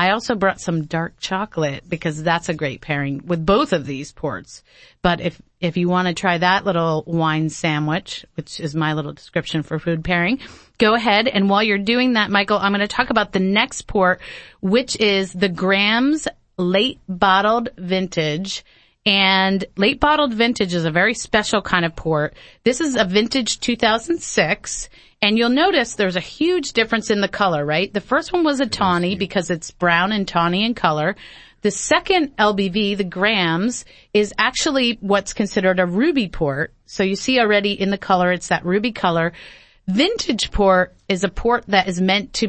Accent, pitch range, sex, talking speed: American, 175-215 Hz, female, 185 wpm